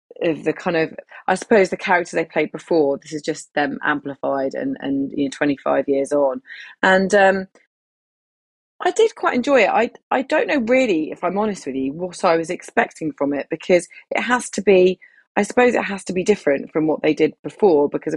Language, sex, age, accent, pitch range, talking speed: English, female, 30-49, British, 150-195 Hz, 210 wpm